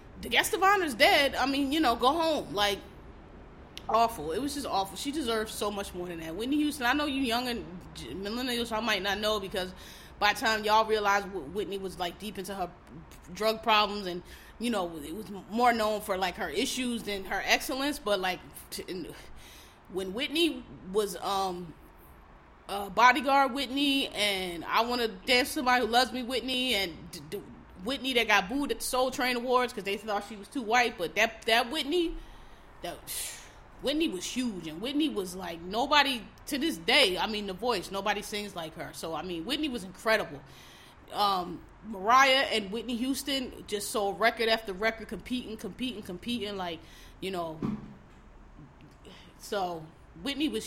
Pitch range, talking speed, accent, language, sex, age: 190-255 Hz, 180 wpm, American, English, female, 20-39